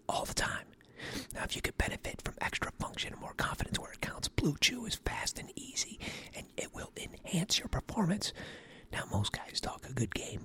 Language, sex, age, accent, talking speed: English, male, 40-59, American, 205 wpm